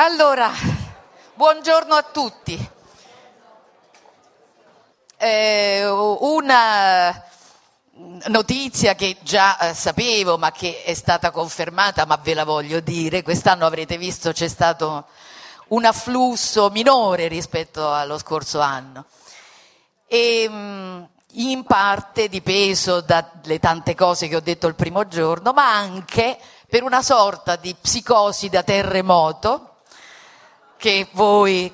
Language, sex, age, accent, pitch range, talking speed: Italian, female, 50-69, native, 170-255 Hz, 110 wpm